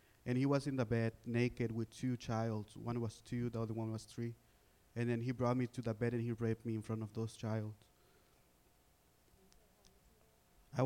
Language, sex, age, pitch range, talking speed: English, male, 20-39, 110-125 Hz, 200 wpm